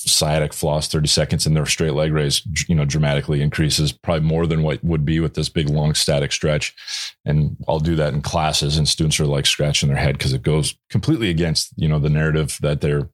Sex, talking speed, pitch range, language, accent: male, 225 wpm, 75-85 Hz, English, American